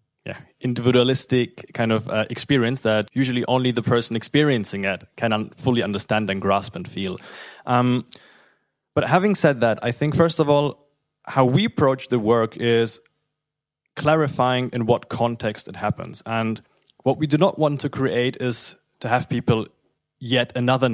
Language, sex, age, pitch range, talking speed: English, male, 20-39, 110-130 Hz, 160 wpm